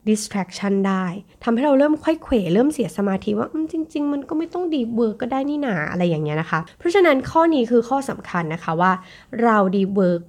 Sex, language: female, Thai